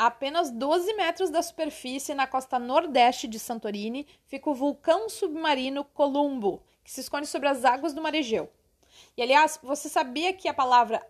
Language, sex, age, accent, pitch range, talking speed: Portuguese, female, 30-49, Brazilian, 245-330 Hz, 175 wpm